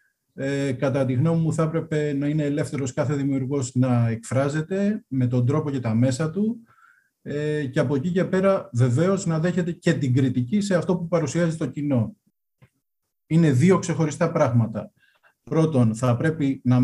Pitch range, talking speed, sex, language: 125-155 Hz, 170 wpm, male, Greek